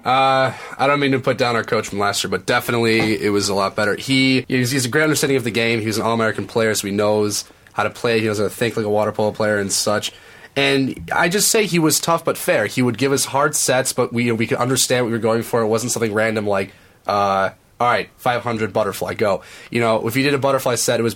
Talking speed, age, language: 270 wpm, 20-39, English